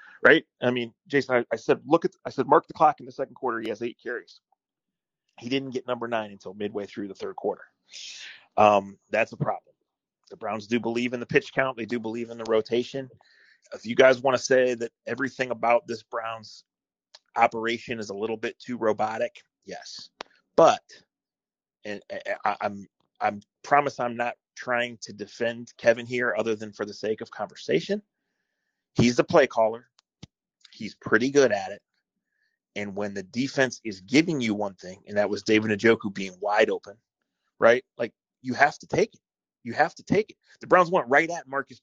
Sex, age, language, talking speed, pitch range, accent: male, 30-49, English, 195 wpm, 110-135 Hz, American